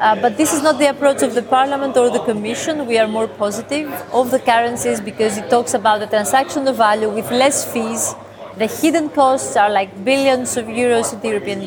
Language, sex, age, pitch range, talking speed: English, female, 30-49, 215-265 Hz, 215 wpm